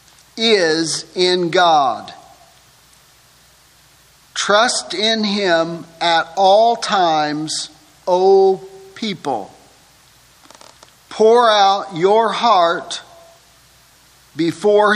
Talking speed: 65 wpm